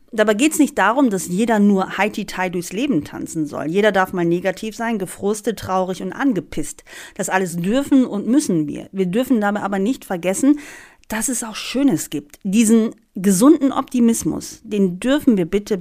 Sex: female